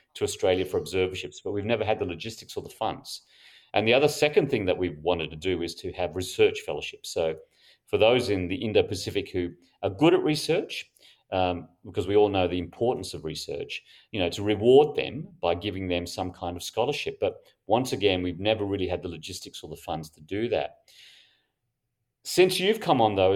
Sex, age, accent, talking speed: male, 40-59, Australian, 205 wpm